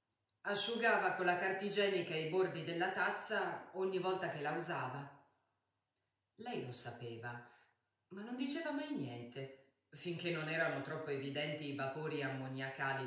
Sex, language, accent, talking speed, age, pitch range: female, Italian, native, 135 wpm, 40-59, 135-205 Hz